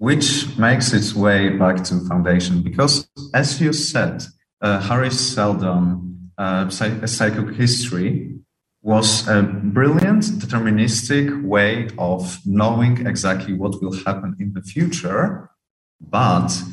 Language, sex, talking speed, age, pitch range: English, male, 120 wpm, 40-59, 95-135 Hz